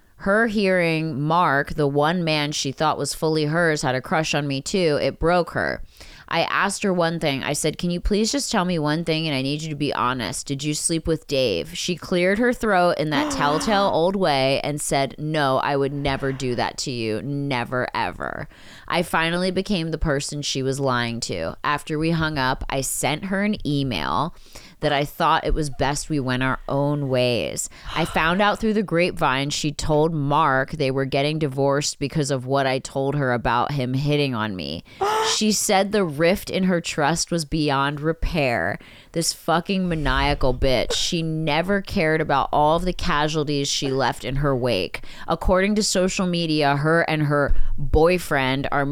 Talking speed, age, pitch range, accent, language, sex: 195 wpm, 20-39, 135-170 Hz, American, English, female